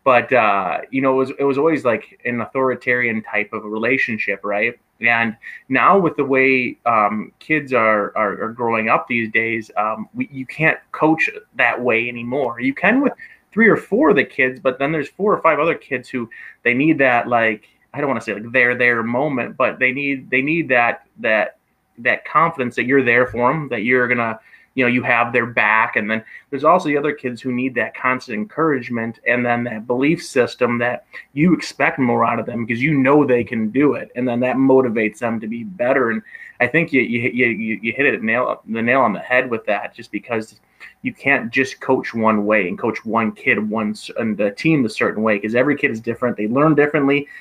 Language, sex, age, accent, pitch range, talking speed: English, male, 30-49, American, 115-140 Hz, 225 wpm